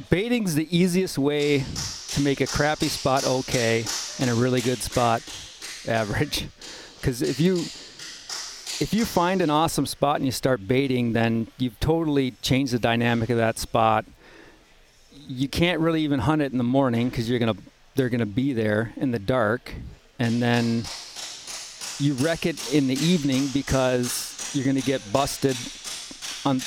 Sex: male